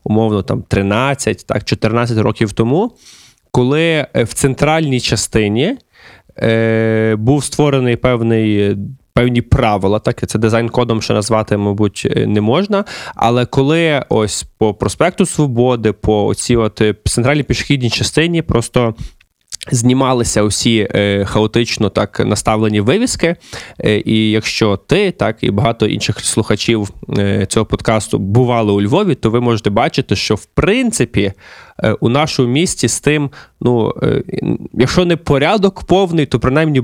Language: Ukrainian